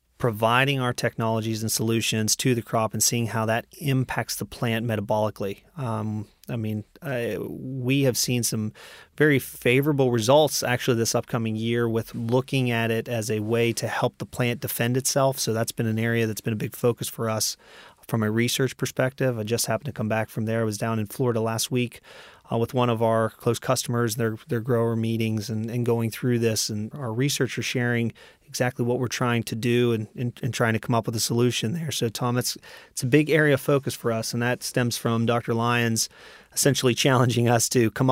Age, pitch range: 30-49, 110-125 Hz